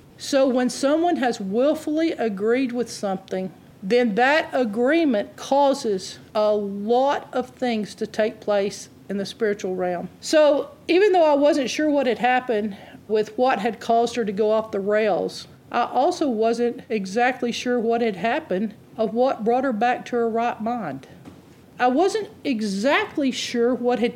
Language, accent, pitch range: English, American, 215-290 Hz